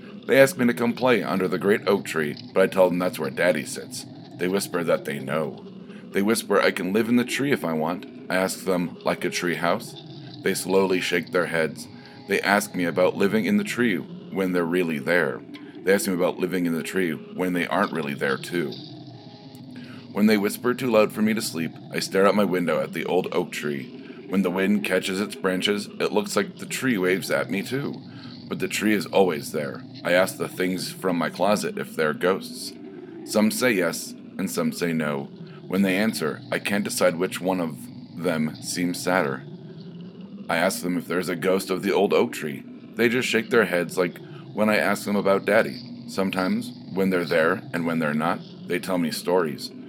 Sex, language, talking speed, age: male, English, 215 wpm, 40-59